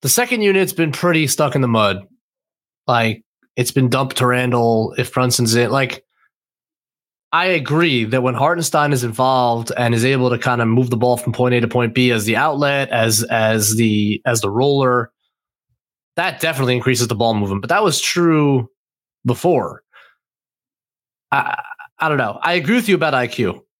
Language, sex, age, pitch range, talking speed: English, male, 20-39, 120-150 Hz, 180 wpm